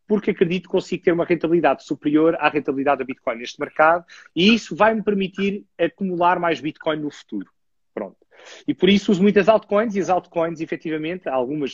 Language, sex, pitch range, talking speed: Portuguese, male, 150-200 Hz, 180 wpm